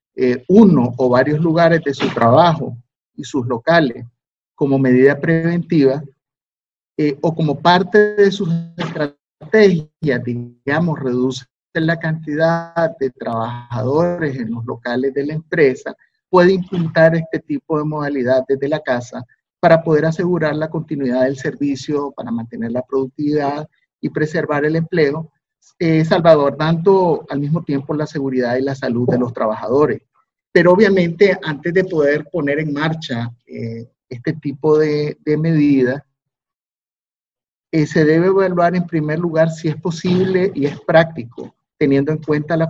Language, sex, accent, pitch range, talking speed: Spanish, male, Venezuelan, 135-165 Hz, 140 wpm